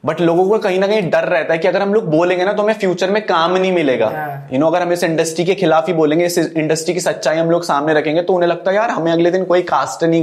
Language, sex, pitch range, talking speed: Hindi, male, 145-175 Hz, 300 wpm